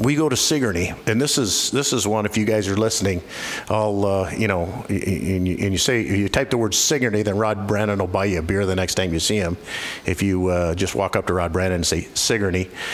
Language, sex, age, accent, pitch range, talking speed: English, male, 50-69, American, 95-120 Hz, 245 wpm